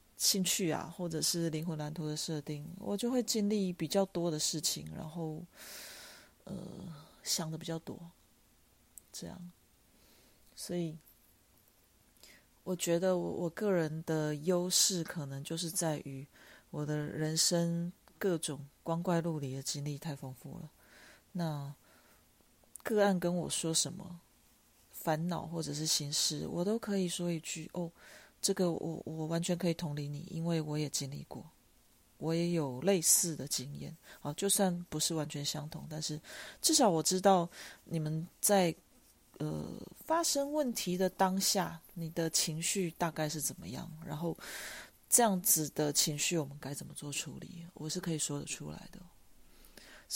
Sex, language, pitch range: female, Chinese, 150-180 Hz